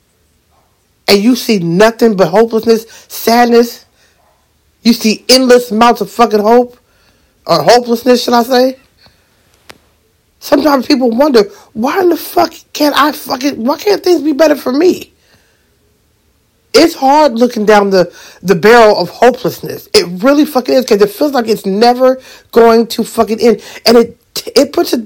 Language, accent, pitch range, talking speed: English, American, 220-265 Hz, 145 wpm